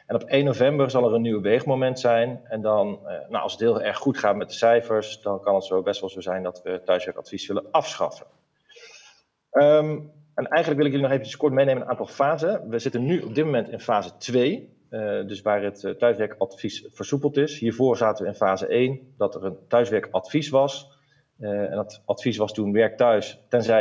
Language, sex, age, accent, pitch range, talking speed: Dutch, male, 40-59, Dutch, 105-130 Hz, 210 wpm